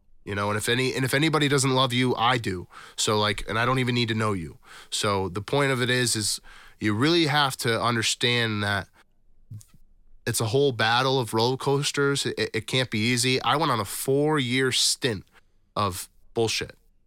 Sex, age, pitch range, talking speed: male, 30-49, 105-125 Hz, 200 wpm